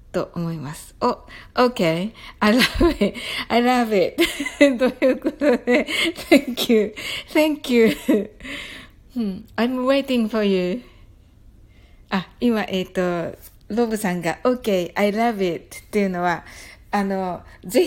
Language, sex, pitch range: Japanese, female, 165-230 Hz